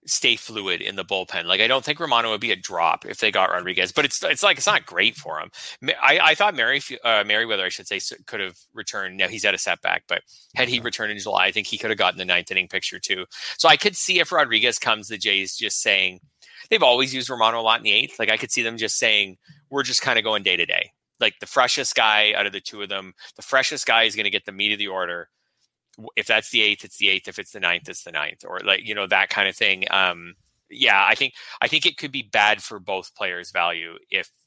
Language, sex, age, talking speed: English, male, 20-39, 270 wpm